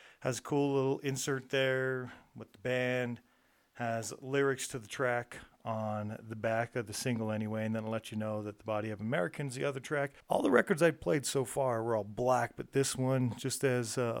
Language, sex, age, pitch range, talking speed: English, male, 40-59, 115-130 Hz, 210 wpm